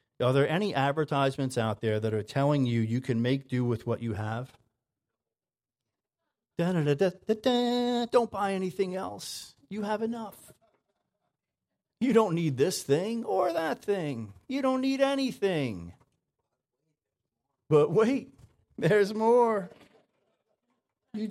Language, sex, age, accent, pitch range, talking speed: English, male, 40-59, American, 115-160 Hz, 120 wpm